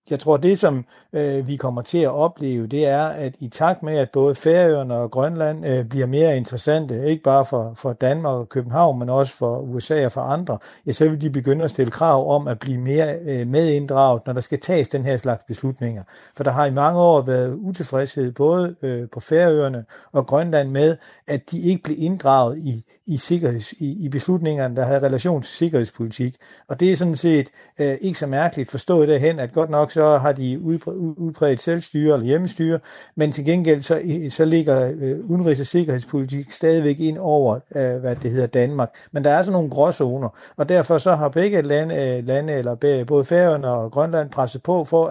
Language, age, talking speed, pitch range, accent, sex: Danish, 60-79, 200 wpm, 130-160 Hz, native, male